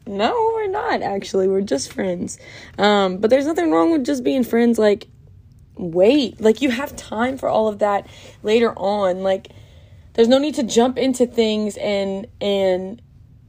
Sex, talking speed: female, 170 wpm